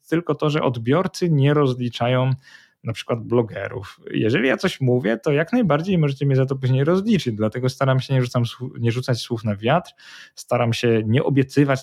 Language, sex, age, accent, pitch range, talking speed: Polish, male, 20-39, native, 120-145 Hz, 180 wpm